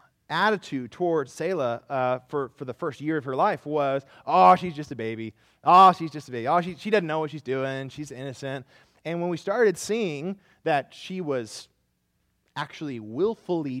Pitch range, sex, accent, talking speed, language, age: 135-185 Hz, male, American, 185 wpm, English, 20-39